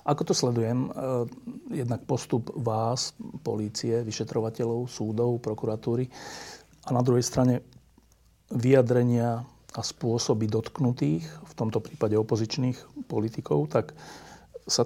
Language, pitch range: Slovak, 115-125 Hz